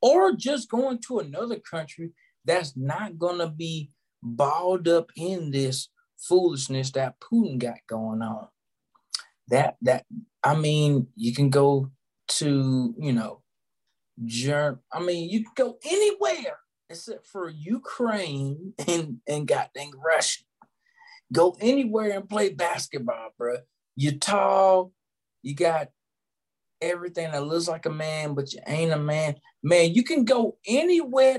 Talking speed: 135 wpm